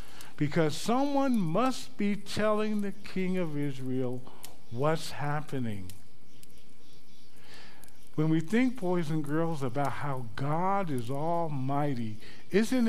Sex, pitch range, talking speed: male, 130-175 Hz, 105 wpm